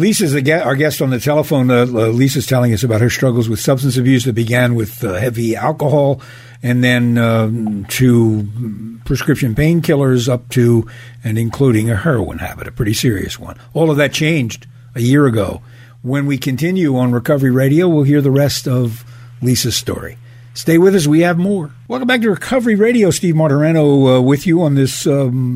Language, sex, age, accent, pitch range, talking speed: English, male, 60-79, American, 120-145 Hz, 185 wpm